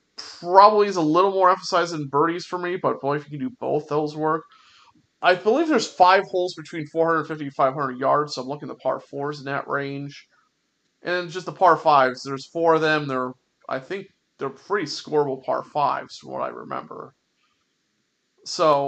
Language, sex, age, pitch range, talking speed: English, male, 30-49, 135-165 Hz, 195 wpm